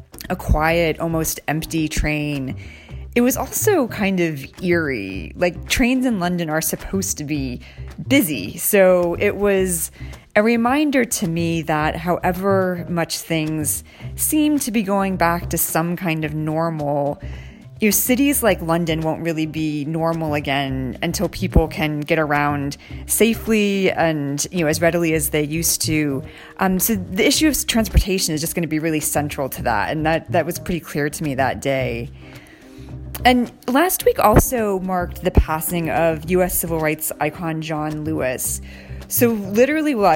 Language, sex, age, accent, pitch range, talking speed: English, female, 30-49, American, 150-185 Hz, 160 wpm